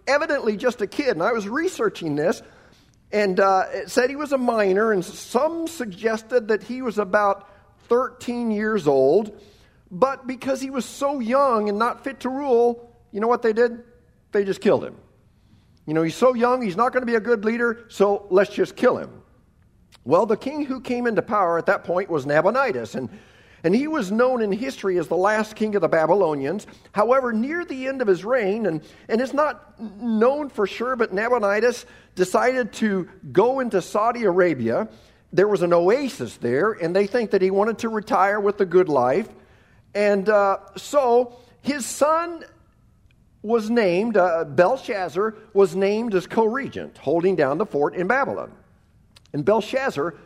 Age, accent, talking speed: 50-69, American, 180 wpm